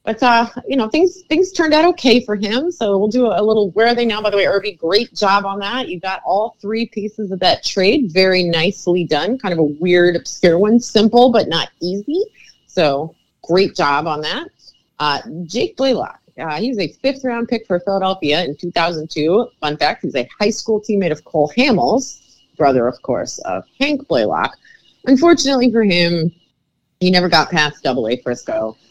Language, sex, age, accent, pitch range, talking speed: English, female, 30-49, American, 155-245 Hz, 195 wpm